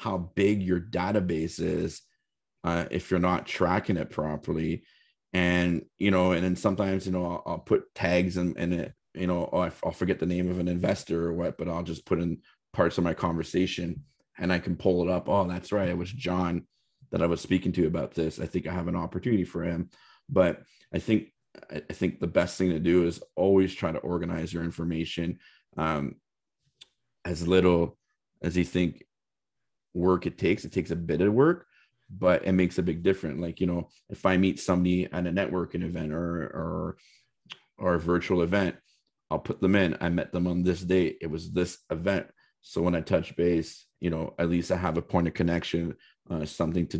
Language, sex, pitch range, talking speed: English, male, 85-95 Hz, 210 wpm